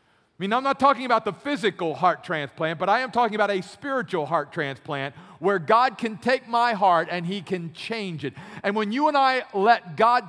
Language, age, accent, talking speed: English, 50-69, American, 215 wpm